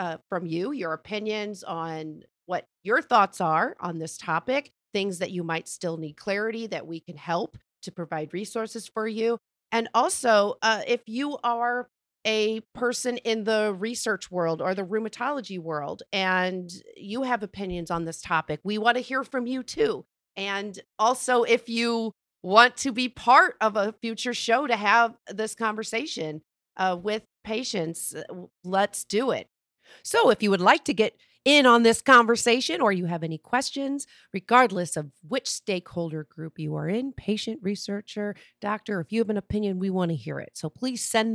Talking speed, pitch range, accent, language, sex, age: 175 wpm, 170-230 Hz, American, English, female, 40-59